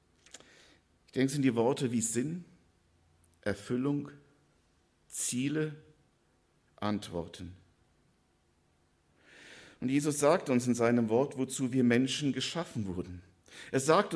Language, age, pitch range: German, 50-69, 110-145 Hz